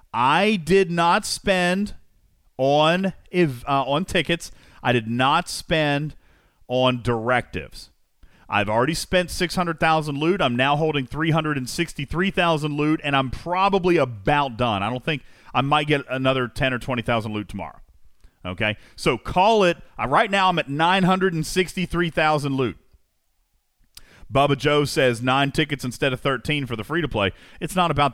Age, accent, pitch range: 40-59, American, 115-165 Hz